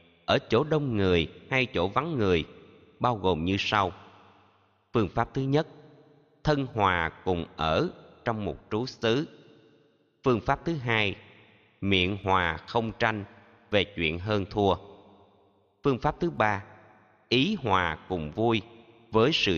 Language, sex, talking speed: Vietnamese, male, 140 wpm